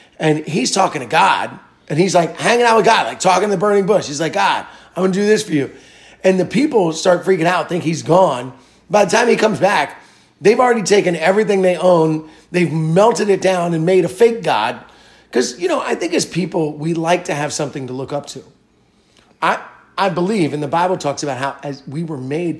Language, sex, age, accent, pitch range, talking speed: English, male, 30-49, American, 140-180 Hz, 230 wpm